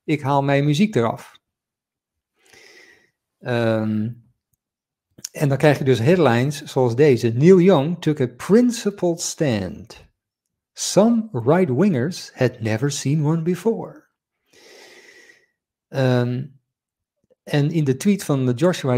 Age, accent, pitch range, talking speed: 50-69, Dutch, 125-170 Hz, 100 wpm